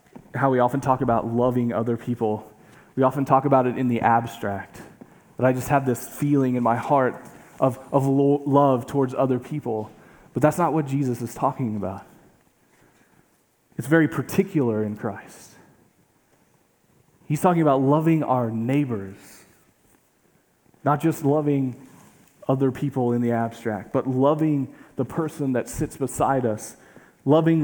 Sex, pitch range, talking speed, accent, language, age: male, 120-145 Hz, 145 wpm, American, English, 20-39